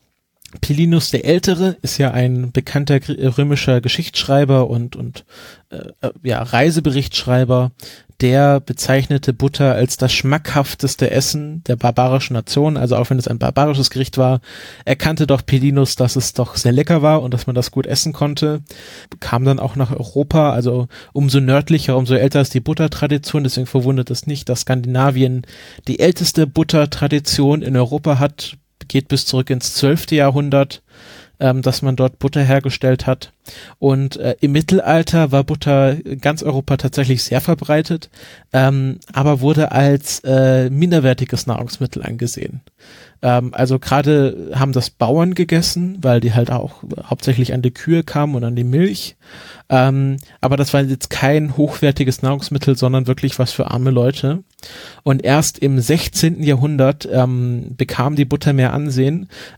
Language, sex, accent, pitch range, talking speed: English, male, German, 130-145 Hz, 150 wpm